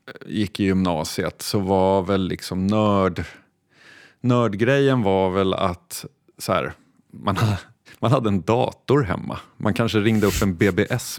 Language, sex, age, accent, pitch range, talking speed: Swedish, male, 30-49, native, 90-115 Hz, 140 wpm